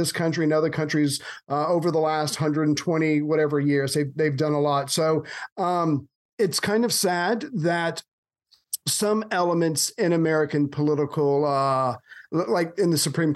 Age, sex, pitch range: 40-59, male, 150-180 Hz